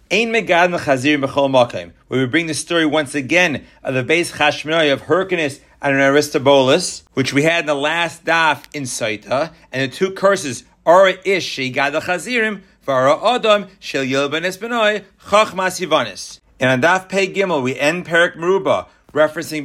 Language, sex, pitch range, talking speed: English, male, 140-185 Hz, 160 wpm